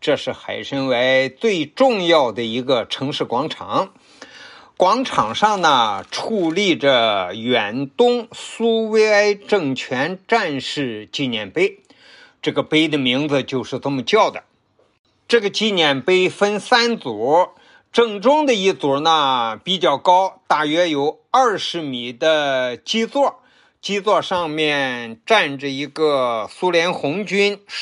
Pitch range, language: 135-205 Hz, Chinese